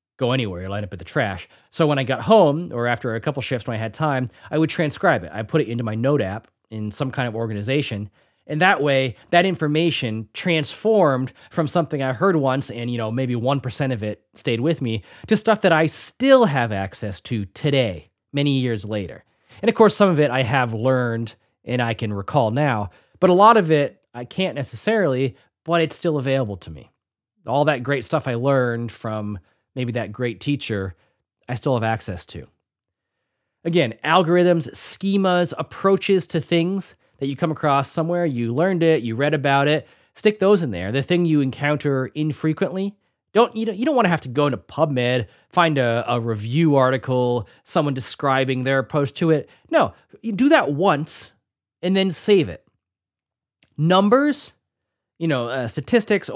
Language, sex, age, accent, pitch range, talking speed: English, male, 20-39, American, 115-165 Hz, 190 wpm